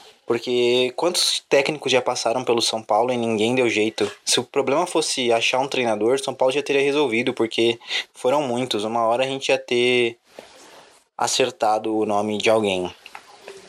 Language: Portuguese